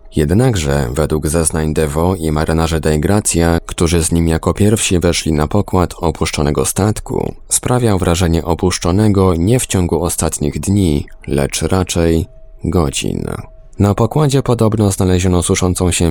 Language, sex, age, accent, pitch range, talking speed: Polish, male, 20-39, native, 80-95 Hz, 125 wpm